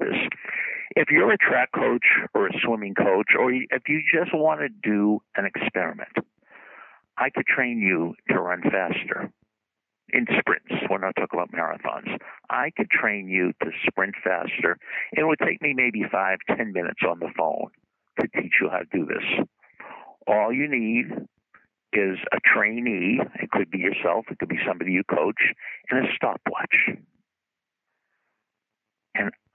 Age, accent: 60-79, American